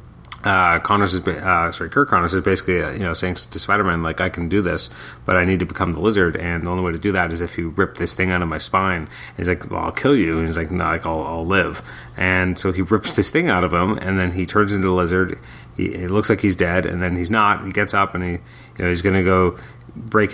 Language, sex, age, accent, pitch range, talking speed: English, male, 30-49, American, 90-115 Hz, 285 wpm